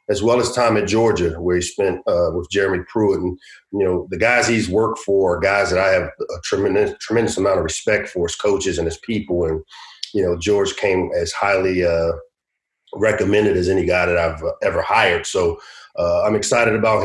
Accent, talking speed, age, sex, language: American, 210 wpm, 40-59, male, English